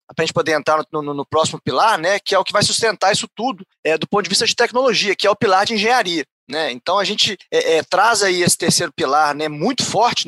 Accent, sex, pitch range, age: Brazilian, male, 165-230 Hz, 20-39